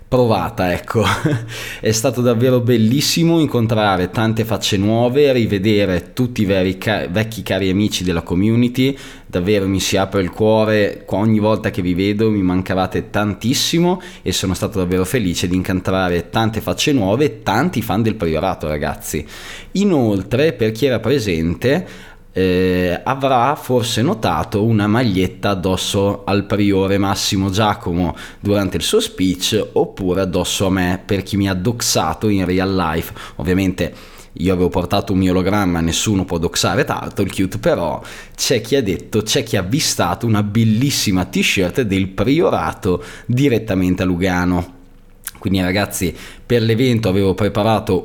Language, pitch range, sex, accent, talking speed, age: Italian, 90-110 Hz, male, native, 145 wpm, 20-39